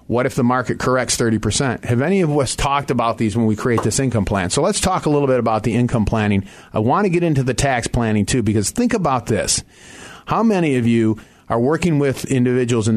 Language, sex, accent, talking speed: English, male, American, 235 wpm